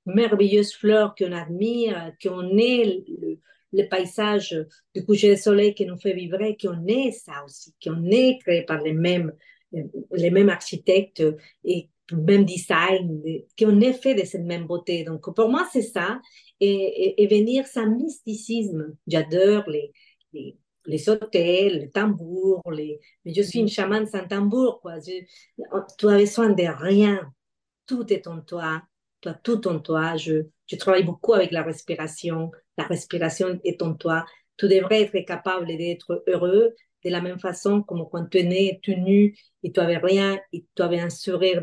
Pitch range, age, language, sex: 175-210 Hz, 40-59, French, female